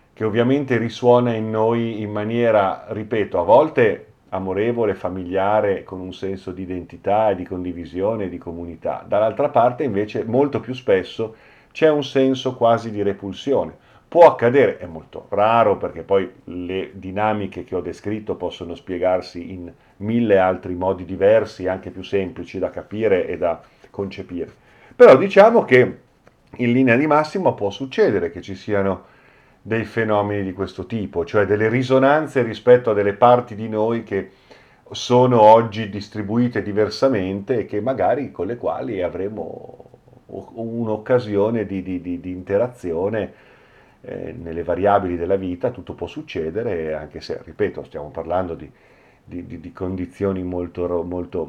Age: 40-59